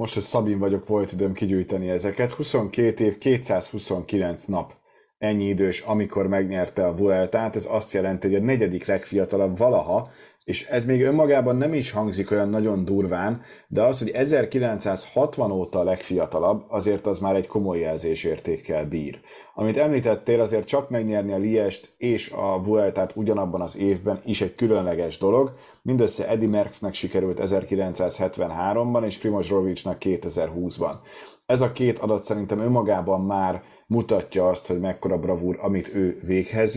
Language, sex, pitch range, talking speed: Hungarian, male, 95-110 Hz, 150 wpm